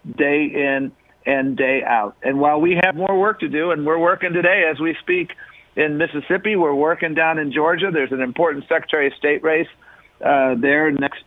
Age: 50-69